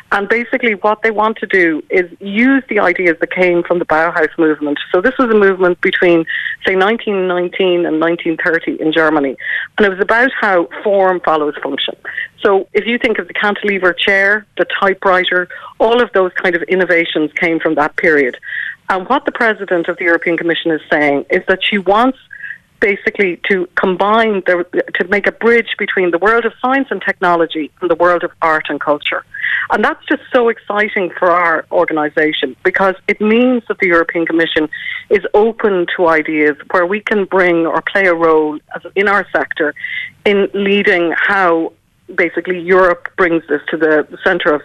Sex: female